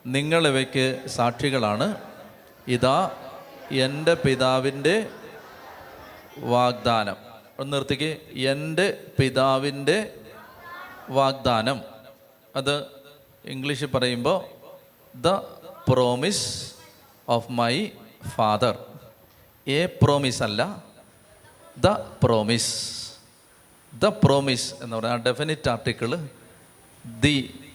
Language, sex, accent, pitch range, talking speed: Malayalam, male, native, 110-140 Hz, 65 wpm